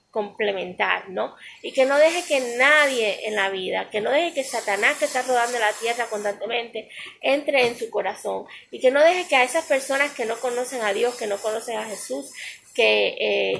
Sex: female